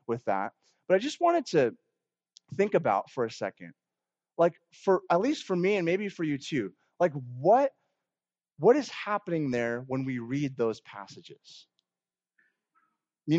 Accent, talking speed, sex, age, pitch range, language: American, 155 wpm, male, 30-49, 145-190 Hz, English